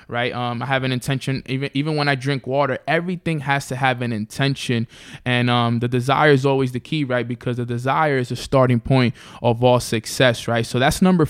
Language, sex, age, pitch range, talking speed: English, male, 20-39, 120-140 Hz, 220 wpm